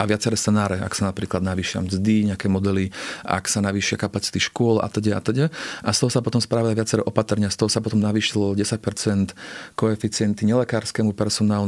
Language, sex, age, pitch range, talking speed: Slovak, male, 40-59, 105-115 Hz, 175 wpm